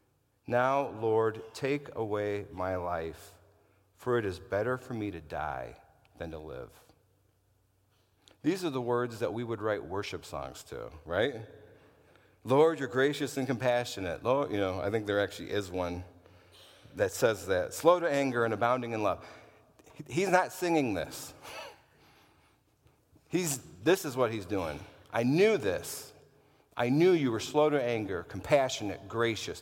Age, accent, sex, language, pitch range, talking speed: 50-69, American, male, English, 105-135 Hz, 150 wpm